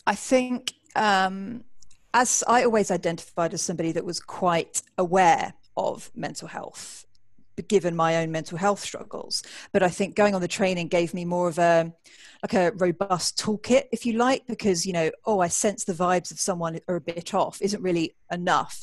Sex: female